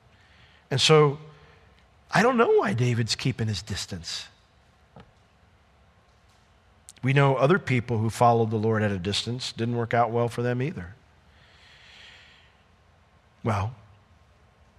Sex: male